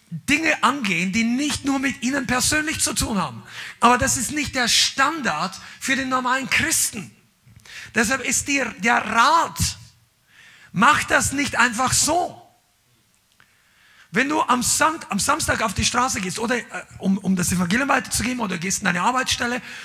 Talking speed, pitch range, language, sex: 155 wpm, 215-270 Hz, German, male